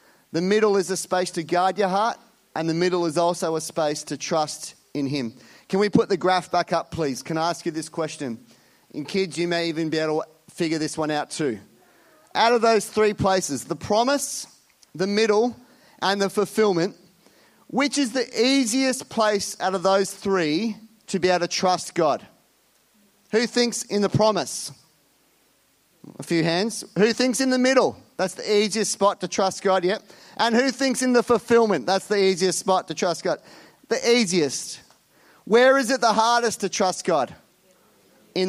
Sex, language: male, English